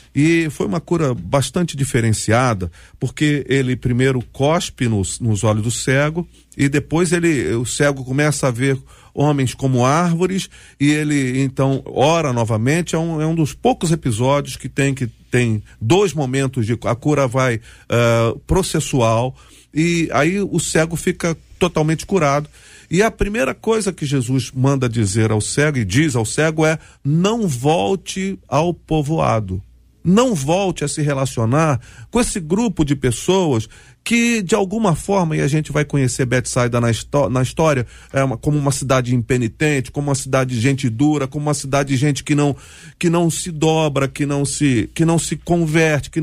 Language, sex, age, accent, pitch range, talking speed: Portuguese, male, 40-59, Brazilian, 130-170 Hz, 160 wpm